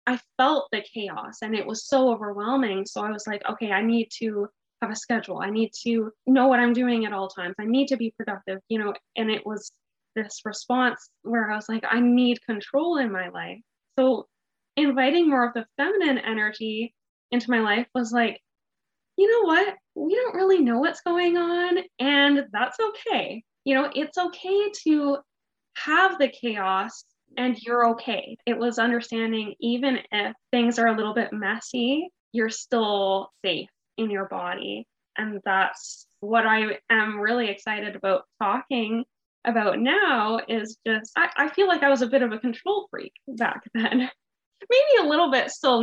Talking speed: 180 wpm